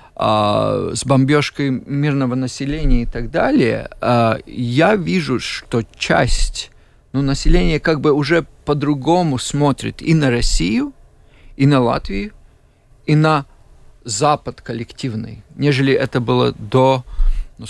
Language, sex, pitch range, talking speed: Russian, male, 120-150 Hz, 110 wpm